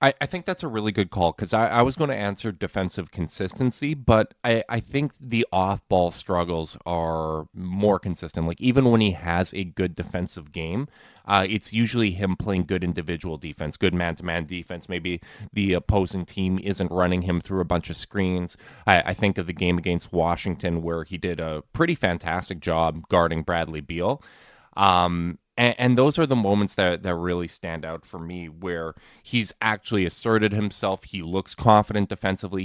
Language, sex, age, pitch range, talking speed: English, male, 20-39, 90-110 Hz, 180 wpm